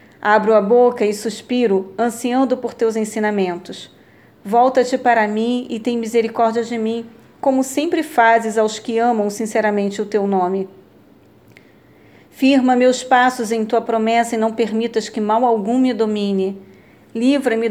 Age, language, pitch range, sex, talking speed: 40-59, Portuguese, 210-235 Hz, female, 140 wpm